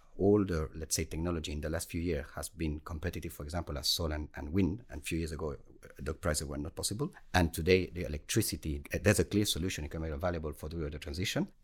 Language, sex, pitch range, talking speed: English, male, 75-95 Hz, 230 wpm